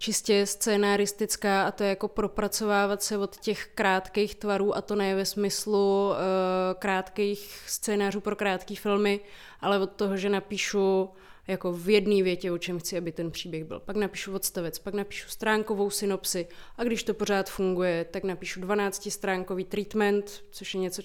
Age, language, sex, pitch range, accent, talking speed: 20-39, Czech, female, 185-200 Hz, native, 165 wpm